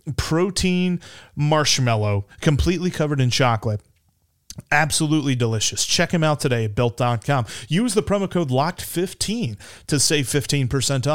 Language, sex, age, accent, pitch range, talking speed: English, male, 30-49, American, 125-155 Hz, 125 wpm